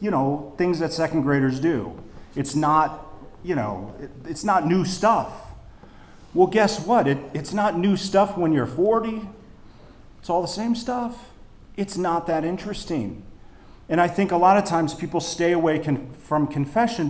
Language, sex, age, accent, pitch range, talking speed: English, male, 40-59, American, 125-175 Hz, 160 wpm